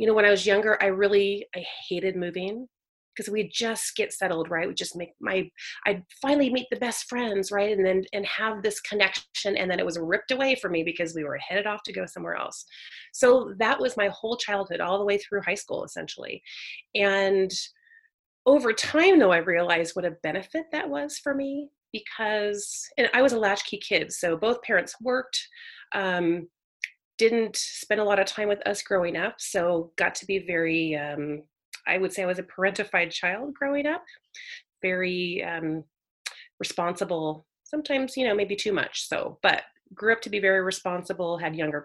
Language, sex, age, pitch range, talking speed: English, female, 30-49, 180-230 Hz, 190 wpm